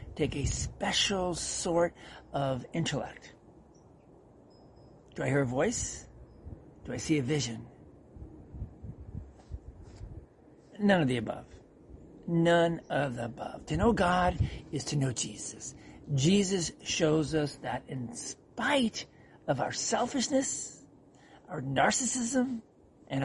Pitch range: 130-175 Hz